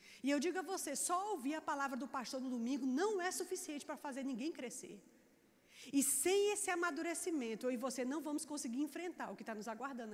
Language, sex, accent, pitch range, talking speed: Portuguese, female, Brazilian, 235-320 Hz, 215 wpm